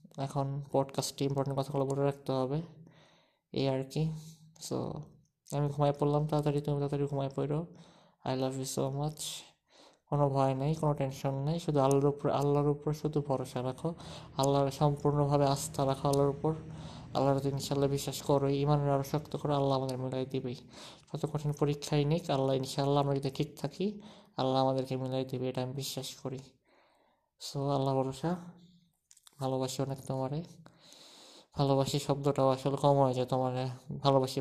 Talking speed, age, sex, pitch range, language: 150 wpm, 20-39, male, 135-150 Hz, Bengali